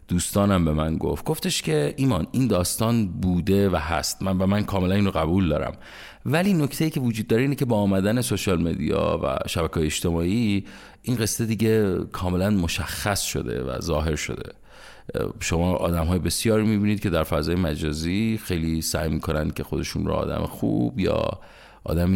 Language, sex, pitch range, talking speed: Persian, male, 80-105 Hz, 170 wpm